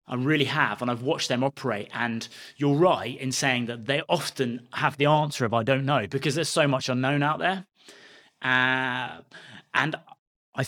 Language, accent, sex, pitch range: English, British, male, 115-140 Hz